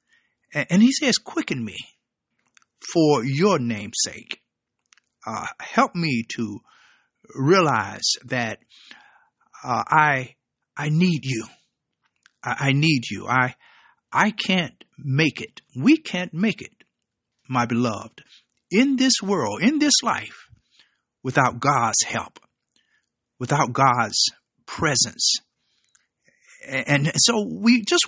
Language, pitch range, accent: English, 130-205 Hz, American